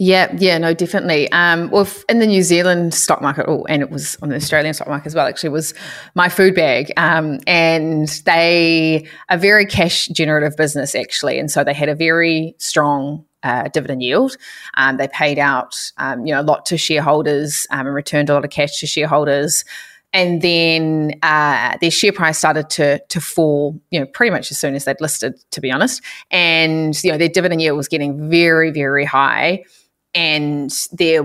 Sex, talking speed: female, 195 wpm